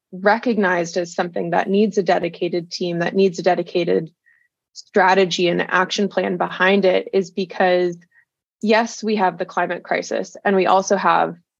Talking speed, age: 155 wpm, 20-39